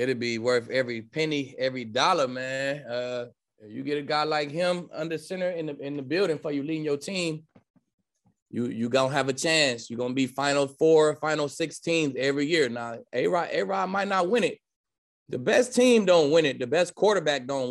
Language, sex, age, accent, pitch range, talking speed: English, male, 20-39, American, 130-160 Hz, 215 wpm